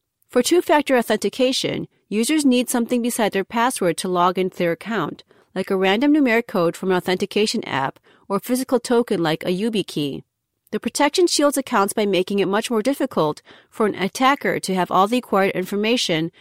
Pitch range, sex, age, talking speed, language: 185-250 Hz, female, 40-59, 180 wpm, English